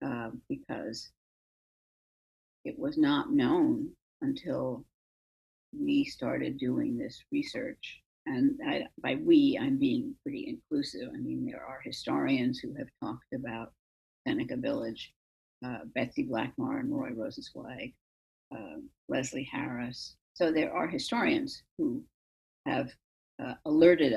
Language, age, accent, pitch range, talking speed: English, 50-69, American, 275-300 Hz, 115 wpm